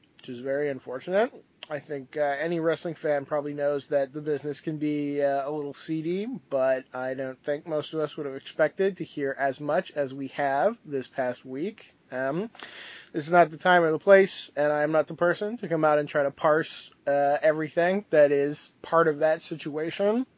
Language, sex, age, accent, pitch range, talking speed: English, male, 20-39, American, 140-165 Hz, 205 wpm